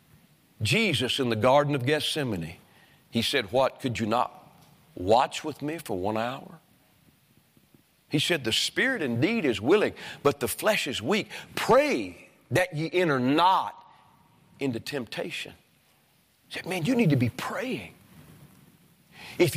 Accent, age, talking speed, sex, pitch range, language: American, 40-59, 140 wpm, male, 140-190 Hz, English